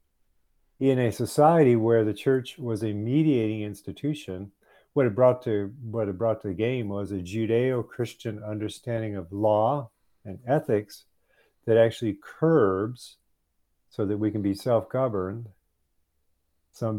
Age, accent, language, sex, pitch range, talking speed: 50-69, American, English, male, 90-115 Hz, 135 wpm